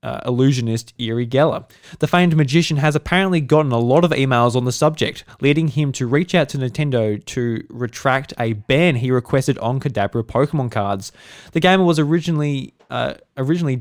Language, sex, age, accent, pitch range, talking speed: English, male, 20-39, Australian, 110-140 Hz, 175 wpm